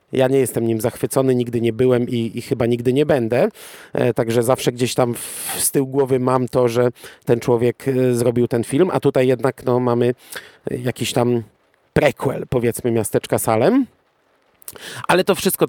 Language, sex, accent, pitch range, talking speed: Polish, male, native, 120-145 Hz, 160 wpm